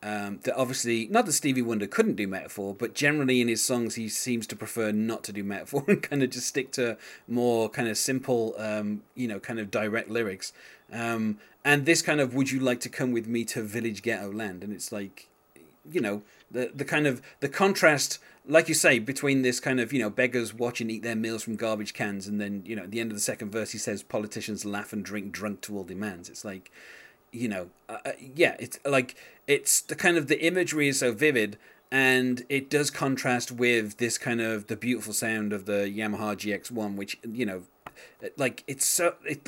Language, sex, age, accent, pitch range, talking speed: English, male, 30-49, British, 110-140 Hz, 220 wpm